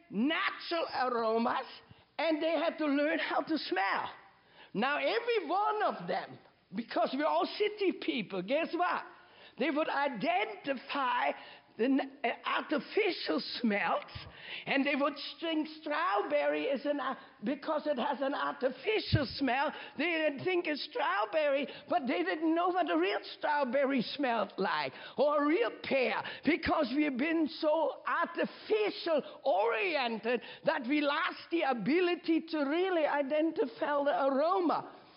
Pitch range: 280-350 Hz